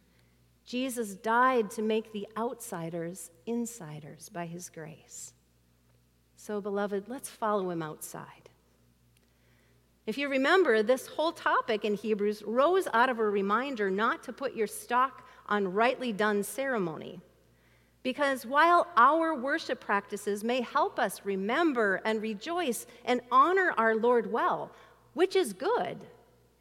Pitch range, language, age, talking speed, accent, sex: 165-255 Hz, English, 50-69, 130 wpm, American, female